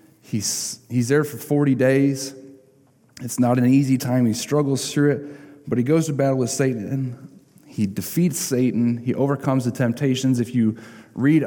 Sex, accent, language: male, American, English